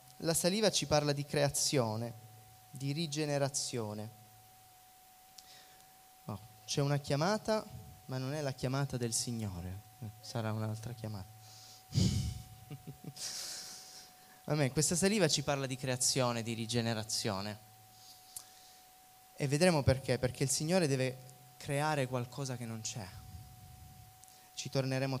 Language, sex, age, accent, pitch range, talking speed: Italian, male, 20-39, native, 120-150 Hz, 105 wpm